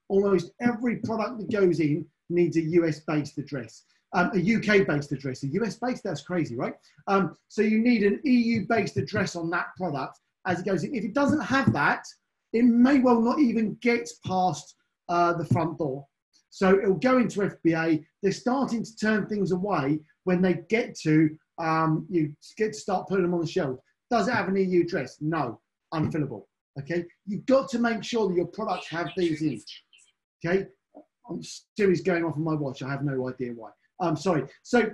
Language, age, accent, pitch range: English, 30-49, British, 160-220 Hz